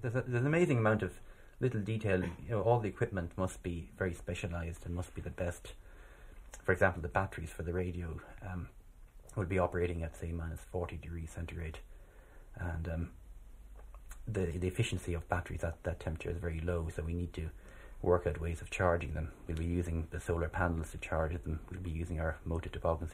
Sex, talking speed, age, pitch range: male, 200 wpm, 30-49, 85-95 Hz